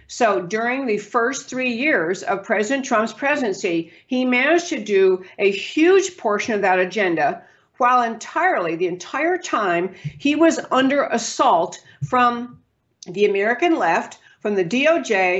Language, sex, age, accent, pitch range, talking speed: English, female, 60-79, American, 200-285 Hz, 140 wpm